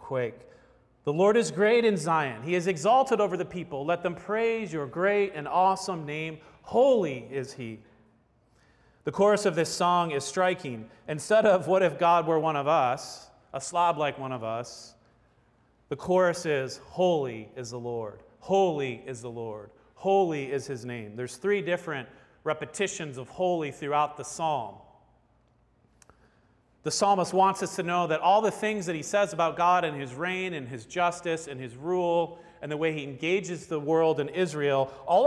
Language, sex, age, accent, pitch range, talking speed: English, male, 40-59, American, 130-185 Hz, 175 wpm